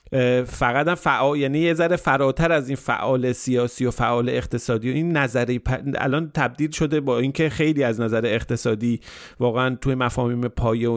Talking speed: 170 wpm